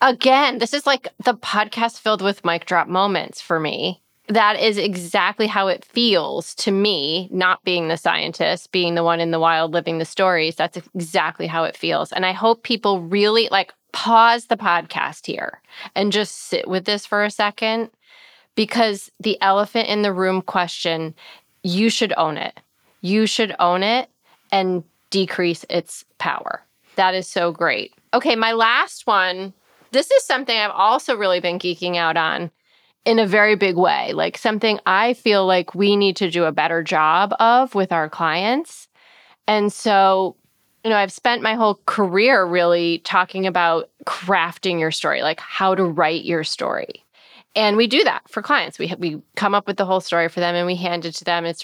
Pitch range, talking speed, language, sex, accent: 170-215 Hz, 185 wpm, English, female, American